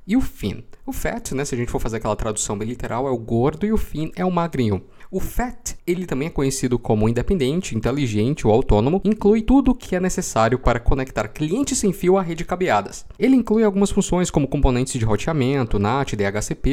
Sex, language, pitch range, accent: male, Portuguese, 120-190 Hz, Brazilian